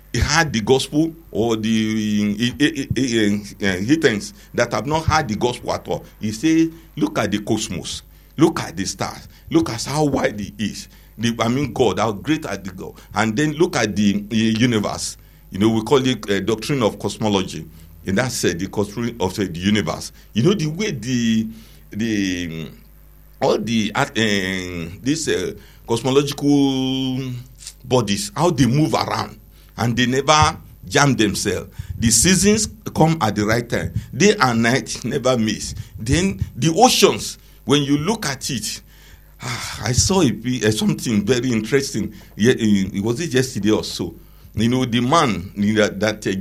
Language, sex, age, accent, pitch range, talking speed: English, male, 60-79, Nigerian, 105-135 Hz, 170 wpm